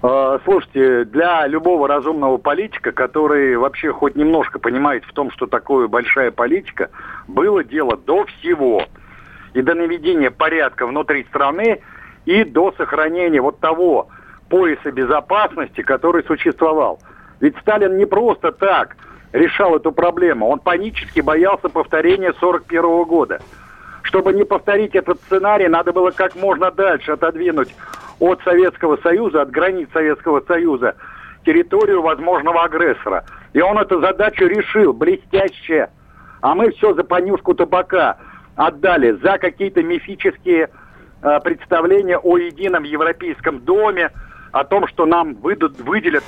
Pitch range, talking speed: 160-220 Hz, 125 wpm